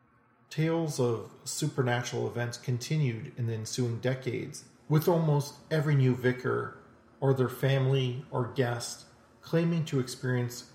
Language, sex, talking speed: English, male, 125 wpm